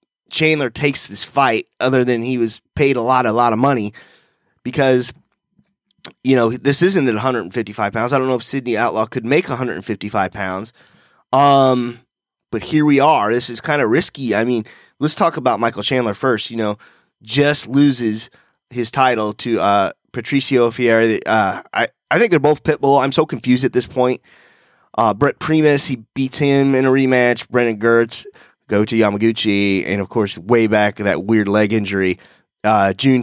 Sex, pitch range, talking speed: male, 110-140 Hz, 180 wpm